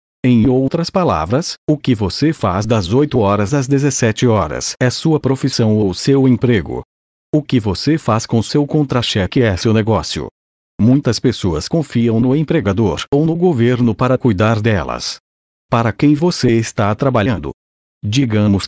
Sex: male